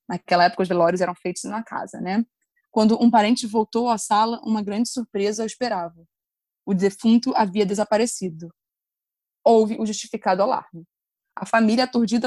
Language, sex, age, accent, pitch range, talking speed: Portuguese, female, 20-39, Brazilian, 190-225 Hz, 150 wpm